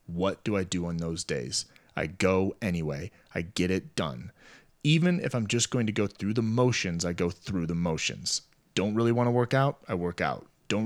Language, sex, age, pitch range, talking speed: English, male, 30-49, 90-115 Hz, 215 wpm